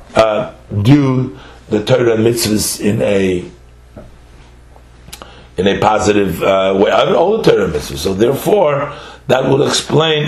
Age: 50-69